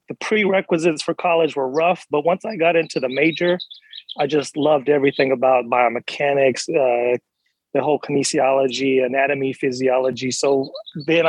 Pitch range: 135-160 Hz